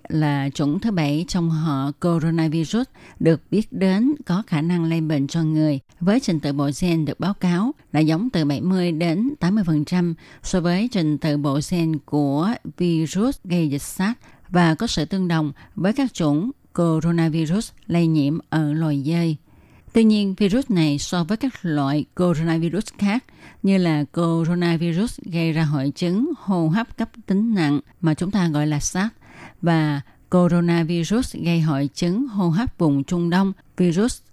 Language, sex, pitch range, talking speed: Vietnamese, female, 155-195 Hz, 165 wpm